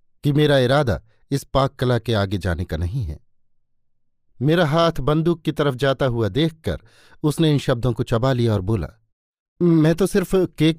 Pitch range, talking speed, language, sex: 115-150 Hz, 180 wpm, Hindi, male